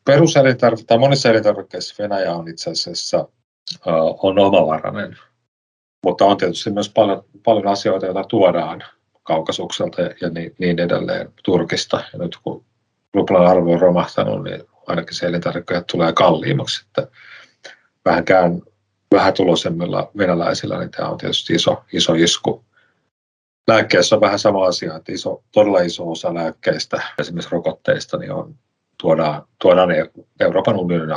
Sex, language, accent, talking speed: male, Finnish, native, 125 wpm